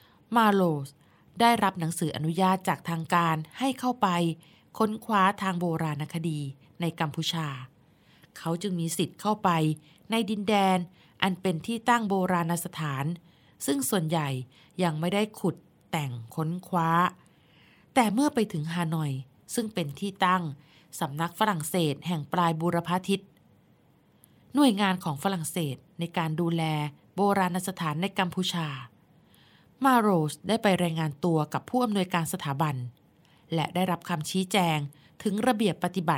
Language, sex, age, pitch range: Thai, female, 20-39, 160-200 Hz